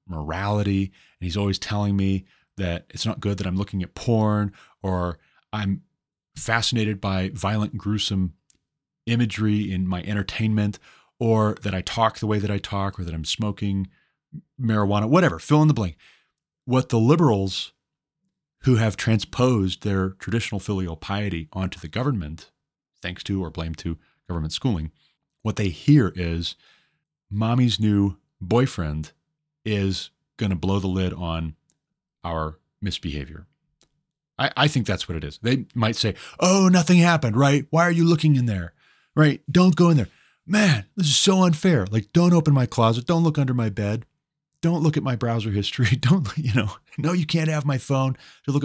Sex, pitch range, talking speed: male, 95-145 Hz, 170 wpm